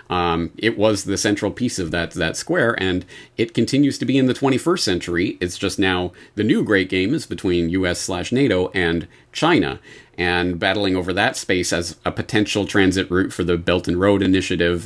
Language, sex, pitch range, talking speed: English, male, 90-120 Hz, 200 wpm